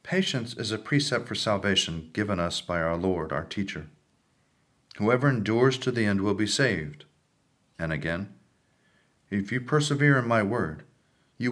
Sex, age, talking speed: male, 40-59, 155 wpm